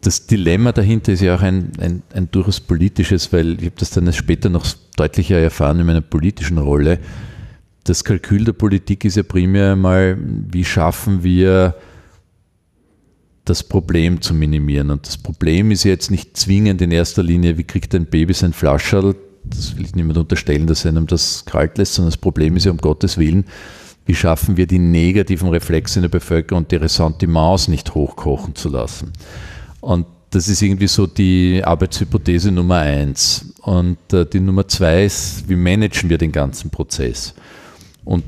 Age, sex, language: 50-69, male, German